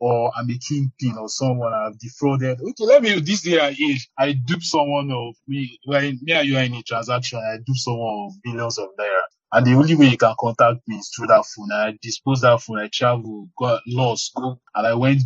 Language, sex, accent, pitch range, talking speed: English, male, Nigerian, 120-155 Hz, 235 wpm